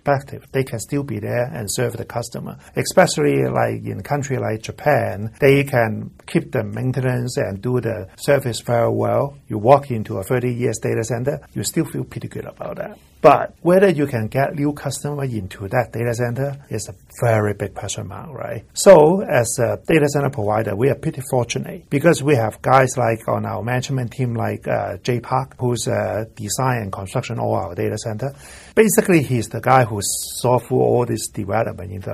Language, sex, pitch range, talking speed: English, male, 110-130 Hz, 195 wpm